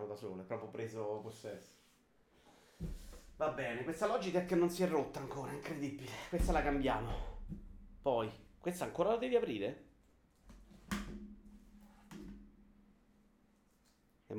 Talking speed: 115 wpm